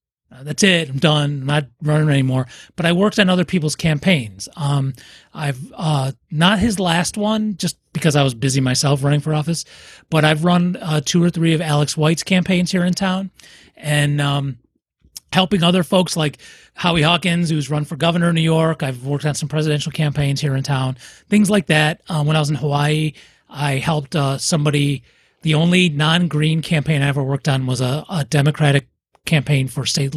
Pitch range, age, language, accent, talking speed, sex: 145-180 Hz, 30-49, English, American, 195 wpm, male